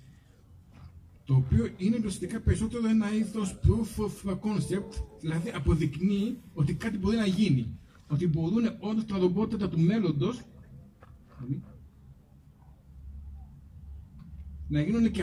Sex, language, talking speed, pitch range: male, Greek, 105 wpm, 145-225 Hz